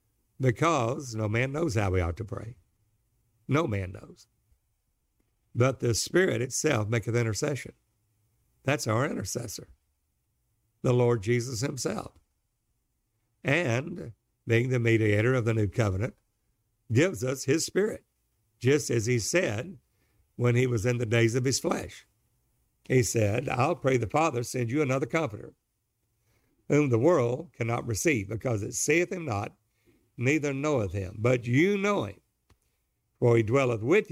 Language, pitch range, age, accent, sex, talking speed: English, 110-135 Hz, 60-79, American, male, 140 wpm